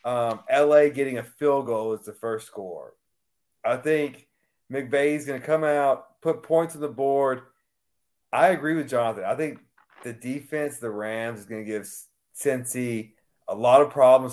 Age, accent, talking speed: 30-49, American, 175 wpm